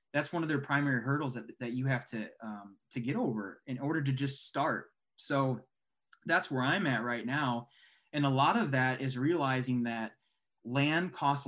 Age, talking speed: 20-39, 190 wpm